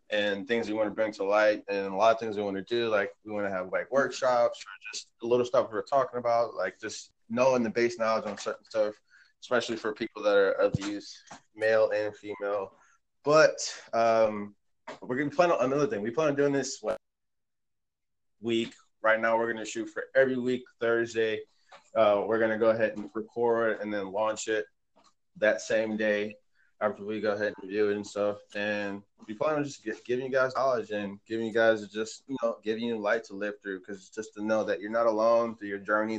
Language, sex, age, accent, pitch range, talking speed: English, male, 20-39, American, 105-120 Hz, 220 wpm